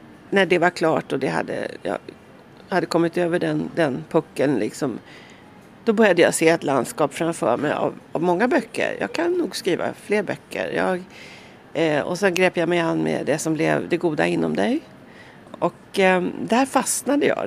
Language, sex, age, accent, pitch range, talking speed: Finnish, female, 40-59, Swedish, 160-200 Hz, 185 wpm